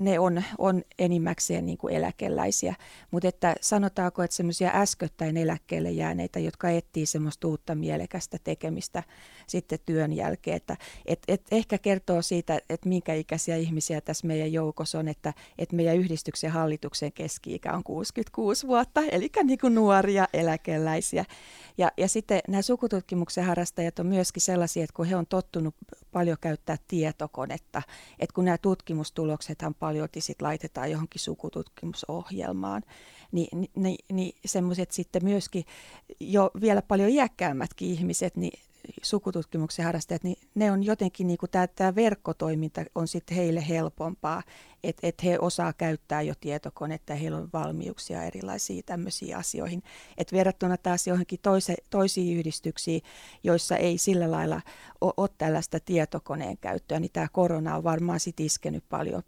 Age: 30-49